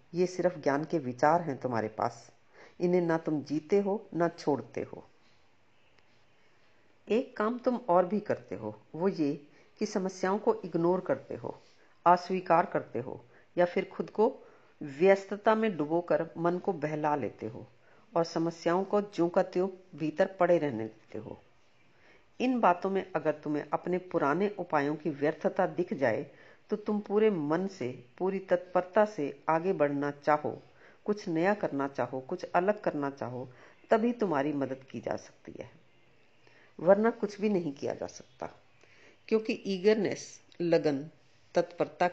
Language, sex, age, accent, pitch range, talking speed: Hindi, female, 50-69, native, 150-195 Hz, 155 wpm